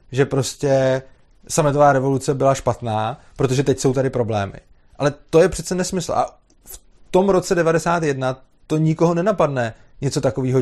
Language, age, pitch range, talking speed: Czech, 30-49, 130-165 Hz, 145 wpm